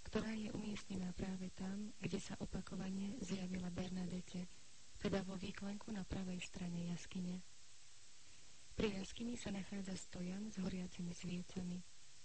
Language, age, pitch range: Slovak, 30-49, 180-200 Hz